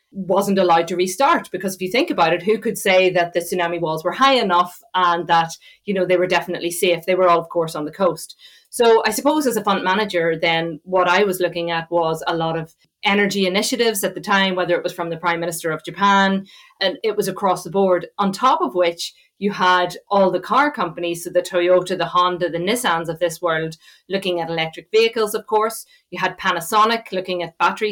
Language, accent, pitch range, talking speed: English, Irish, 175-200 Hz, 225 wpm